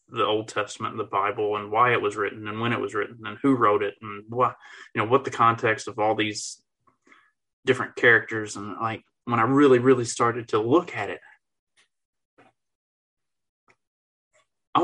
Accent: American